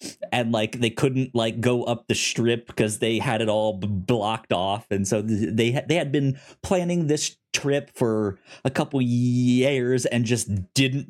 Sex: male